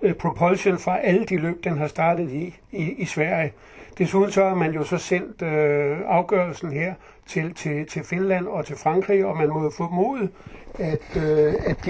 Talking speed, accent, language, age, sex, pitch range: 175 wpm, native, Danish, 60-79, male, 155-190 Hz